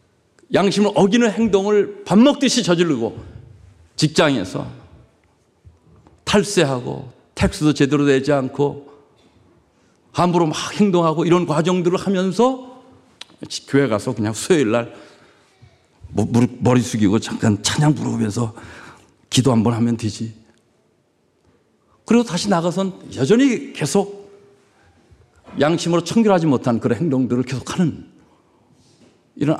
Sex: male